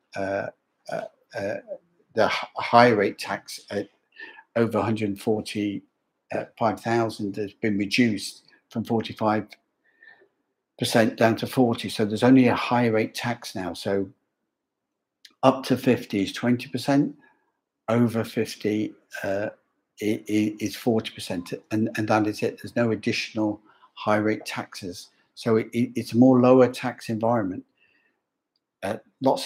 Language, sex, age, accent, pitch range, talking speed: English, male, 50-69, British, 105-125 Hz, 135 wpm